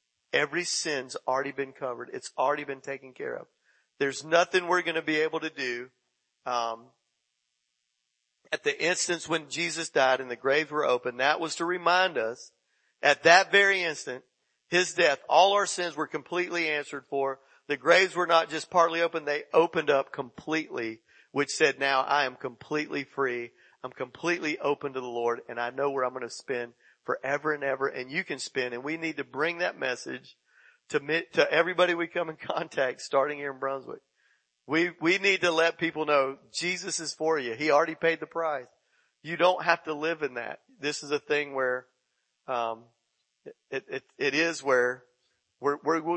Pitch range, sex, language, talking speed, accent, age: 130-165 Hz, male, English, 185 wpm, American, 50-69